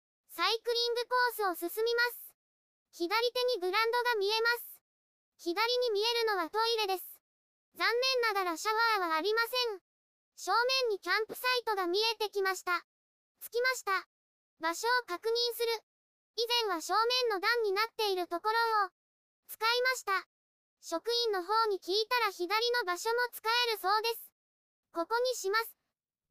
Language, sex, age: Japanese, male, 20-39